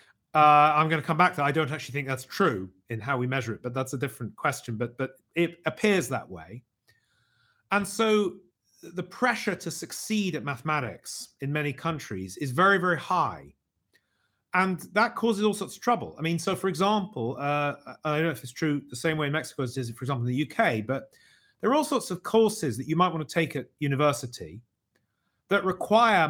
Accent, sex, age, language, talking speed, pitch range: British, male, 40-59, English, 215 wpm, 130-185 Hz